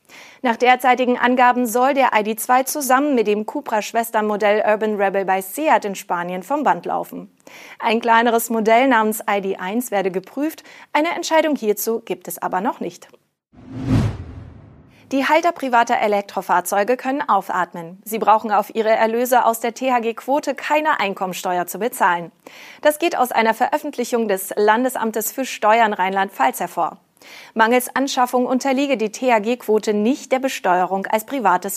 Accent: German